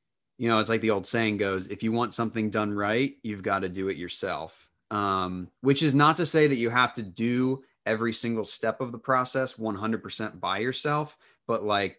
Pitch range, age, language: 95-115 Hz, 30-49, English